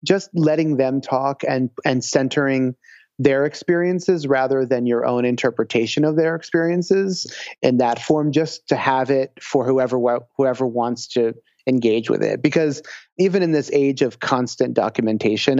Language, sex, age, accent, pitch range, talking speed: English, male, 30-49, American, 120-145 Hz, 155 wpm